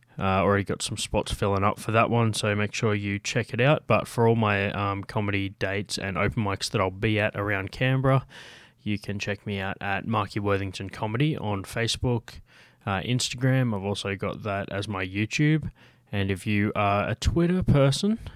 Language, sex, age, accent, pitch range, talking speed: English, male, 20-39, Australian, 100-115 Hz, 195 wpm